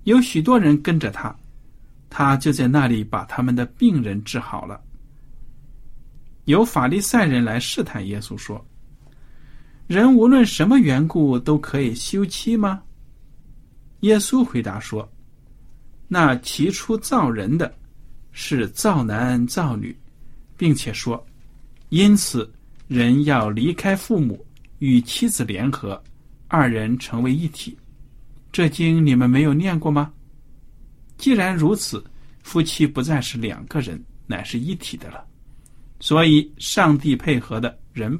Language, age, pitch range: Chinese, 50-69, 125-170 Hz